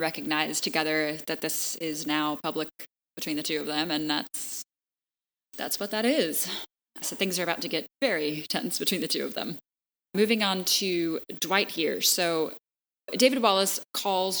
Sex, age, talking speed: female, 10-29, 165 wpm